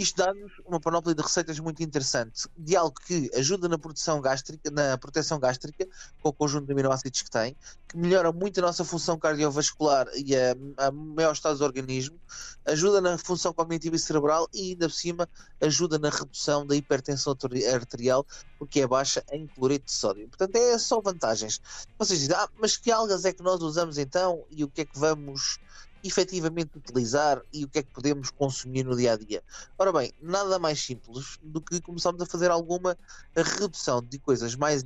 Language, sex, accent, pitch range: Portuguese, male, Portuguese, 140-175 Hz